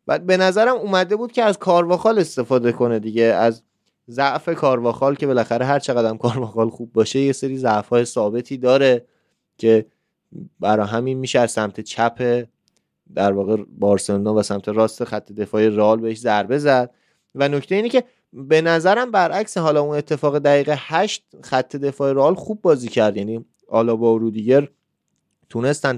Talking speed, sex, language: 160 wpm, male, Persian